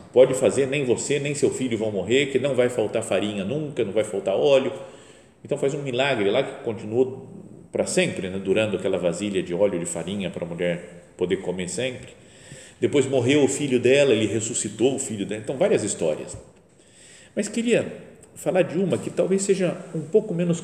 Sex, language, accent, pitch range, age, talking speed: male, Portuguese, Brazilian, 105-175 Hz, 40-59, 190 wpm